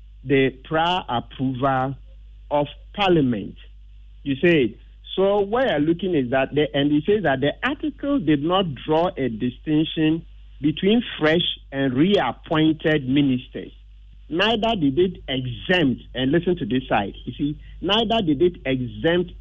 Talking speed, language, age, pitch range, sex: 140 wpm, English, 50-69, 125-175 Hz, male